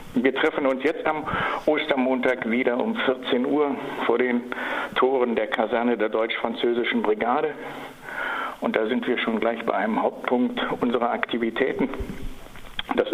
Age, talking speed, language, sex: 60-79, 135 wpm, German, male